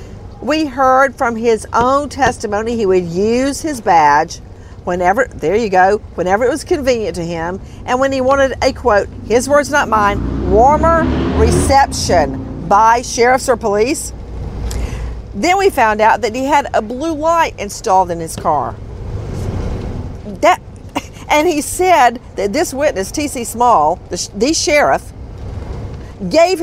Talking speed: 140 wpm